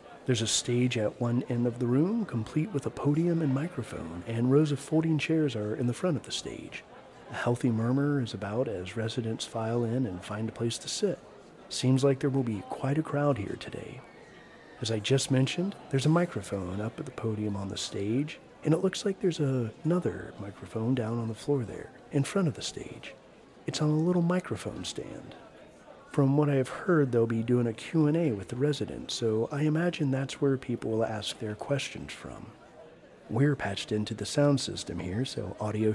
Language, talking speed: English, 205 wpm